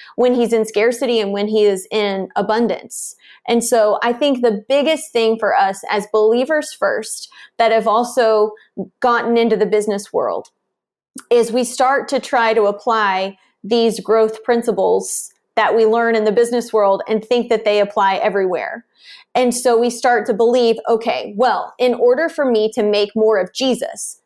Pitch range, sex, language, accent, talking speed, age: 215-250 Hz, female, English, American, 175 wpm, 30-49